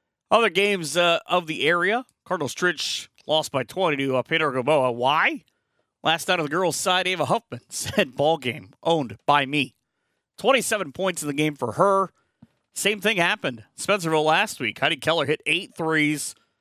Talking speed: 175 wpm